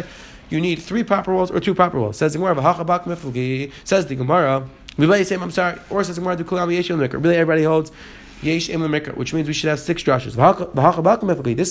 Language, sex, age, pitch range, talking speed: English, male, 30-49, 150-195 Hz, 130 wpm